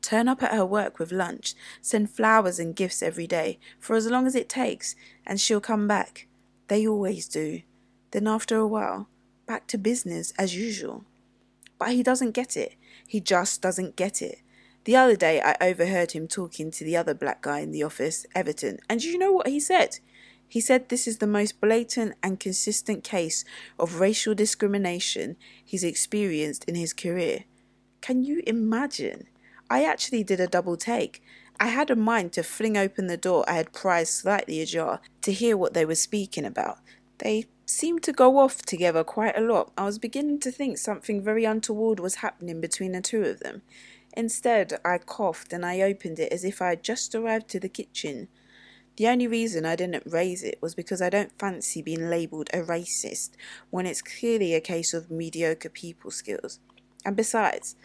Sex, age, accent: female, 20-39, British